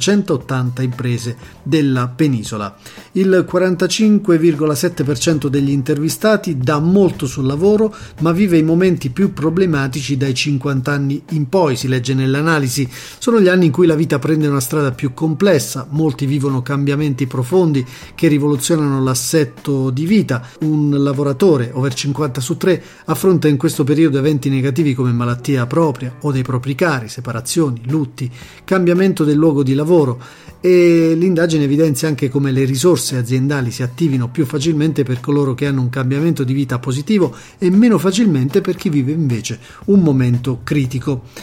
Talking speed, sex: 150 wpm, male